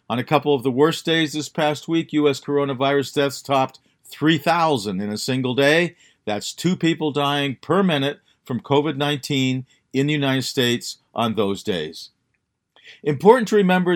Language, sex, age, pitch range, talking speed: English, male, 50-69, 135-165 Hz, 160 wpm